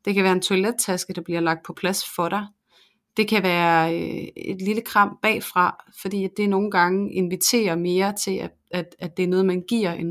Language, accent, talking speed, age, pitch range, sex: Danish, native, 215 wpm, 30-49, 180-210 Hz, female